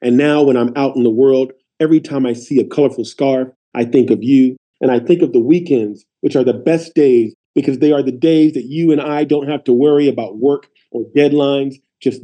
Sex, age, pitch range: male, 40-59, 135-185 Hz